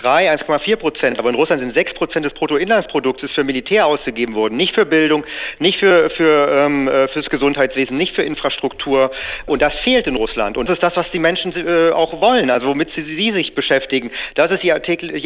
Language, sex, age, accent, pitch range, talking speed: German, male, 40-59, German, 135-170 Hz, 200 wpm